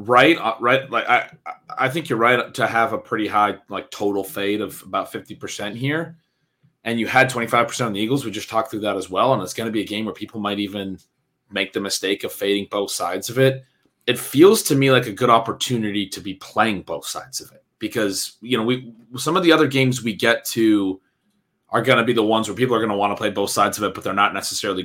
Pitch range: 100-125 Hz